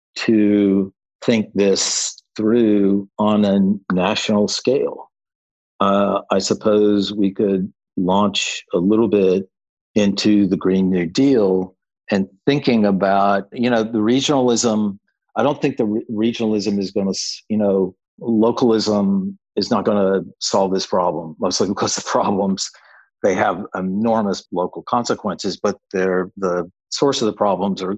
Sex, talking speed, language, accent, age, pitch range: male, 135 wpm, English, American, 50-69, 95-110 Hz